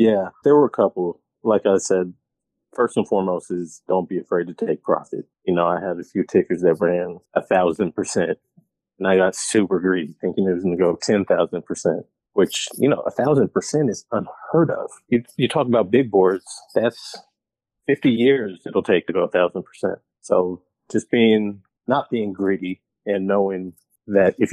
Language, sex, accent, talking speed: English, male, American, 190 wpm